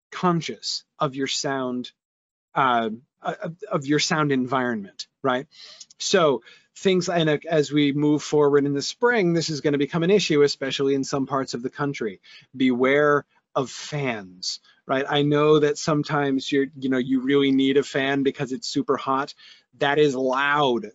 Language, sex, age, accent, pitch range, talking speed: English, male, 30-49, American, 140-200 Hz, 165 wpm